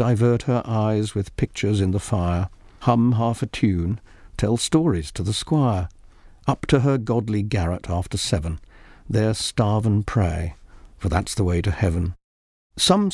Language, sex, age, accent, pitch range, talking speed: English, male, 50-69, British, 90-120 Hz, 160 wpm